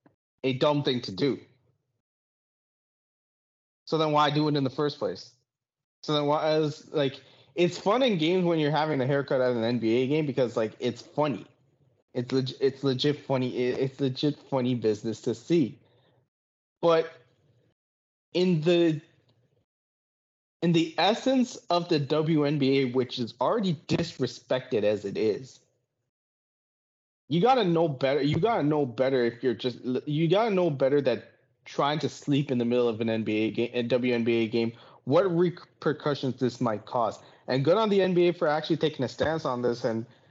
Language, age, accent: English, 20-39, American